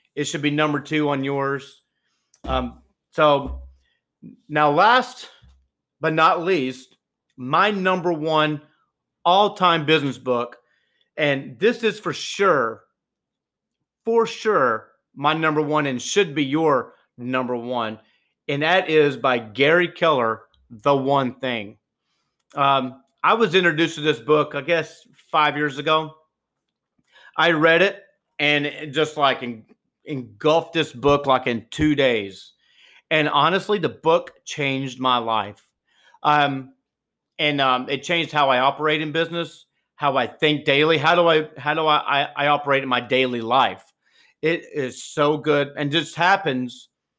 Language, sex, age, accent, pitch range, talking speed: English, male, 40-59, American, 130-160 Hz, 145 wpm